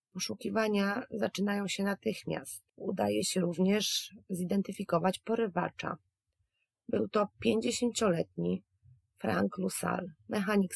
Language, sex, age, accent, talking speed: Polish, female, 30-49, native, 85 wpm